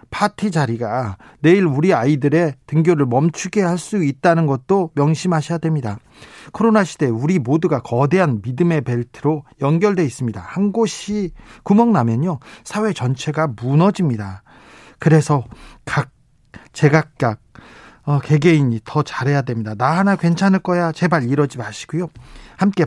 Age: 40-59